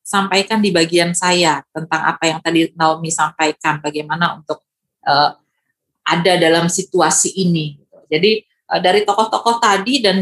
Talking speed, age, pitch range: 135 wpm, 30-49, 160-195 Hz